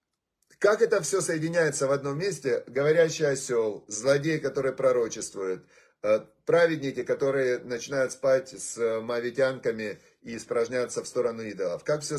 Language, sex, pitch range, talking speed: Russian, male, 130-185 Hz, 125 wpm